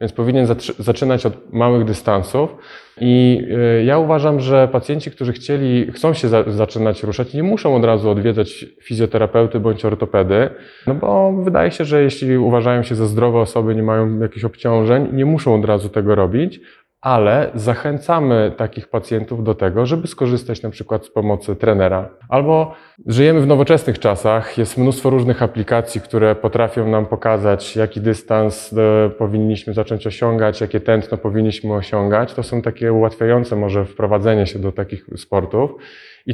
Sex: male